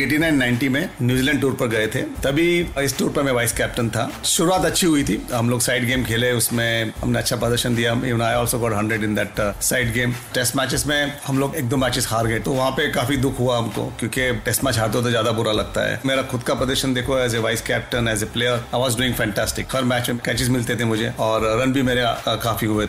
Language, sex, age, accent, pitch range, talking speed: Hindi, male, 40-59, native, 115-135 Hz, 170 wpm